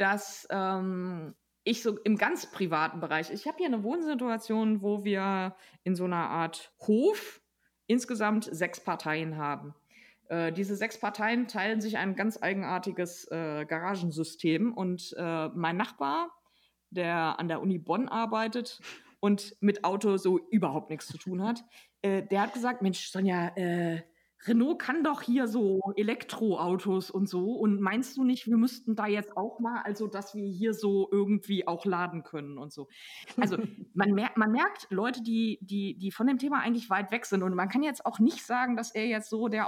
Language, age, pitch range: German, 20-39, 180-225 Hz